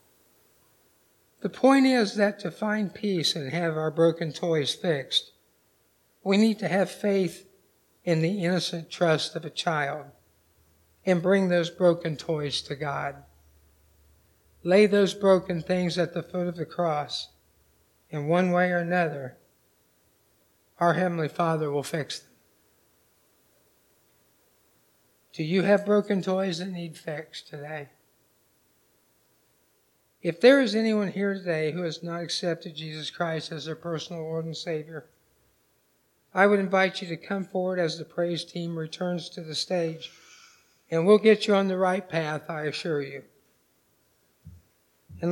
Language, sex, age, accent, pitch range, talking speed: English, male, 60-79, American, 155-190 Hz, 140 wpm